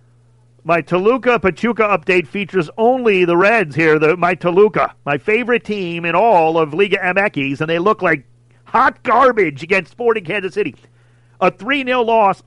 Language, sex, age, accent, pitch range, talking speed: English, male, 40-59, American, 125-190 Hz, 160 wpm